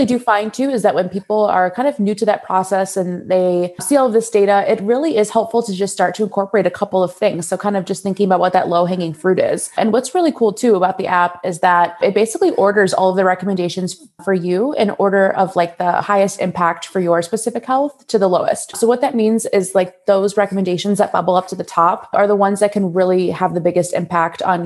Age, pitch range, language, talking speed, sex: 20-39, 180-210 Hz, English, 255 wpm, female